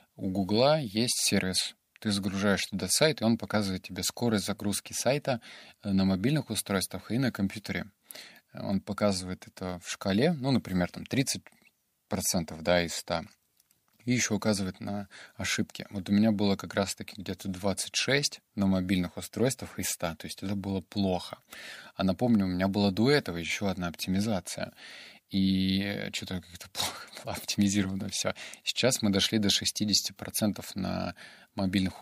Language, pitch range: Russian, 95-110 Hz